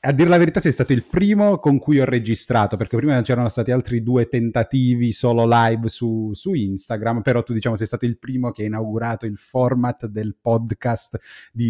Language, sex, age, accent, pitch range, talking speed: Italian, male, 30-49, native, 110-130 Hz, 200 wpm